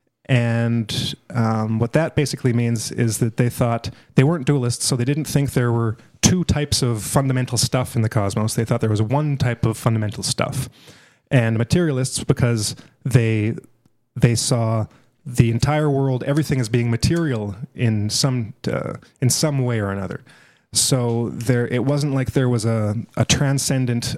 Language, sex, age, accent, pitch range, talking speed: English, male, 30-49, American, 115-135 Hz, 165 wpm